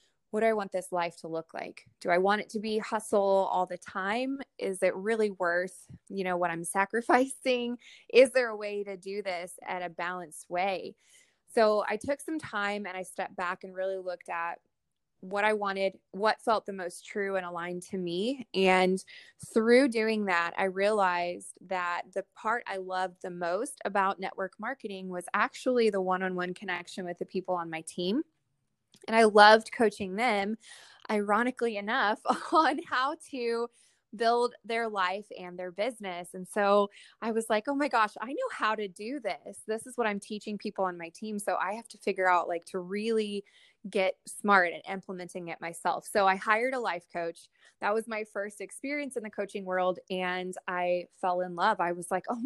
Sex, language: female, English